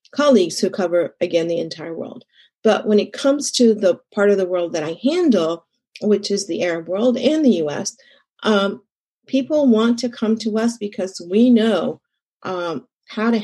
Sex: female